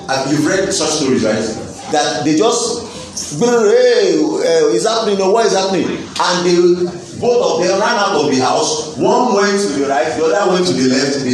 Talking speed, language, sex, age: 190 wpm, English, male, 40-59